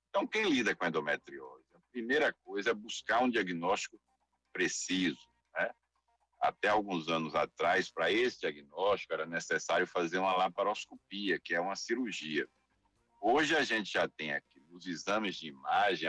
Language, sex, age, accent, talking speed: Portuguese, male, 60-79, Brazilian, 155 wpm